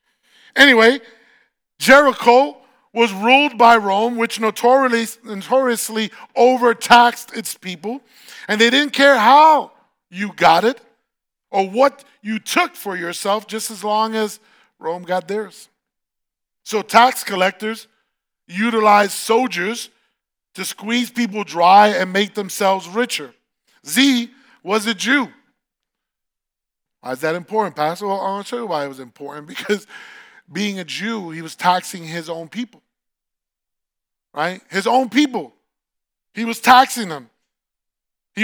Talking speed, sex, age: 130 wpm, male, 40-59